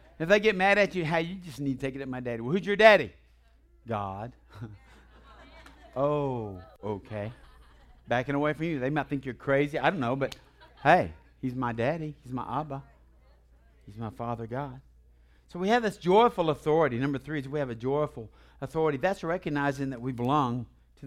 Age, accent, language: 60-79, American, English